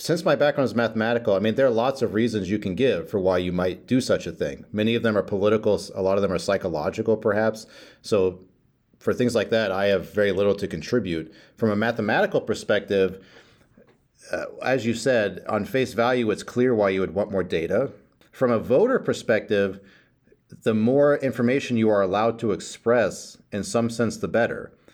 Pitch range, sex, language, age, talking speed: 100-120 Hz, male, English, 40-59, 195 wpm